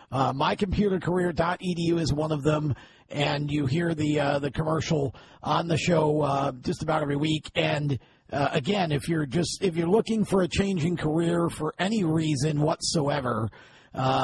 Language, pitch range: English, 140-175 Hz